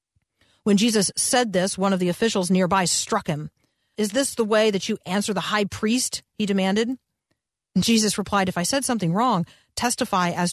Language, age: English, 40-59